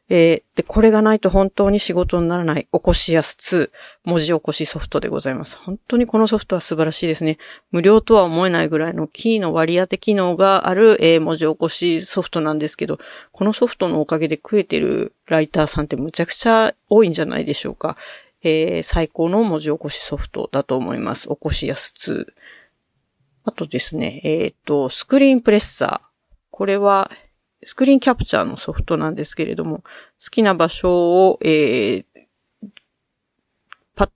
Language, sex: Japanese, female